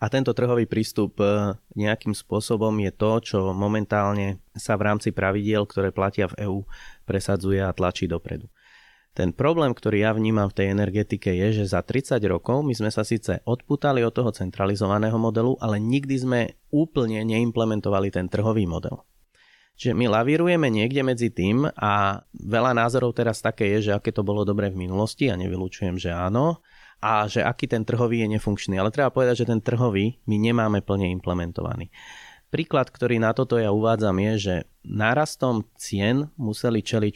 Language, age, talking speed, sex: Slovak, 30-49, 170 wpm, male